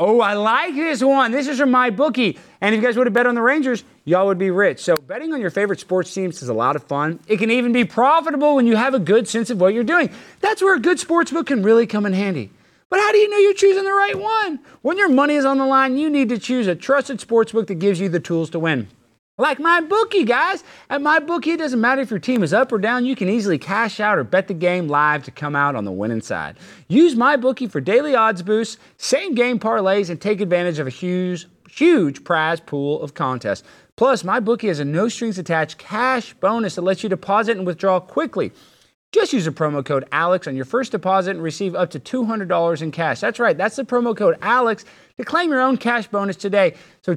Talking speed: 245 wpm